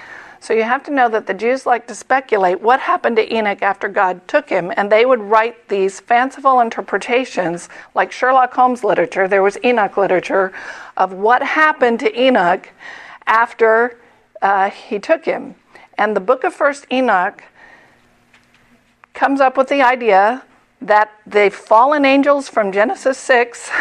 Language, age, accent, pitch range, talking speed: English, 50-69, American, 205-260 Hz, 155 wpm